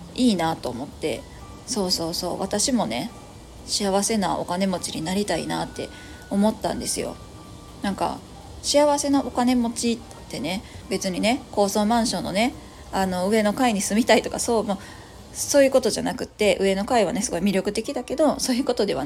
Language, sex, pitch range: Japanese, female, 195-255 Hz